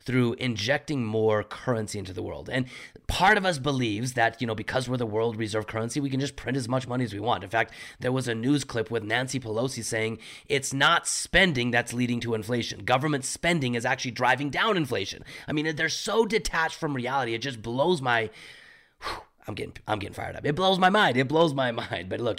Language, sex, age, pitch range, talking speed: English, male, 30-49, 110-135 Hz, 225 wpm